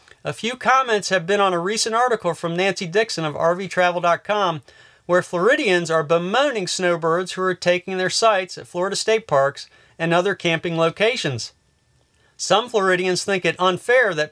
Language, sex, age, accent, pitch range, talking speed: English, male, 40-59, American, 155-205 Hz, 160 wpm